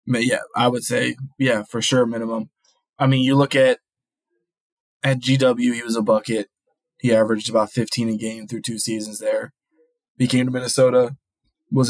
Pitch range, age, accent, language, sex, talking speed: 115-140 Hz, 20-39, American, English, male, 170 wpm